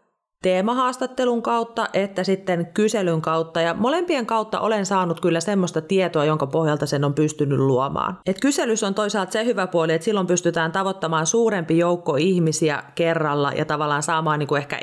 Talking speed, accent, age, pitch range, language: 160 wpm, native, 30-49, 150-185 Hz, Finnish